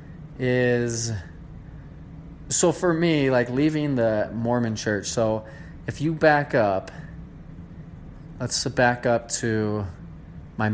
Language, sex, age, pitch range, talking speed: English, male, 20-39, 110-140 Hz, 105 wpm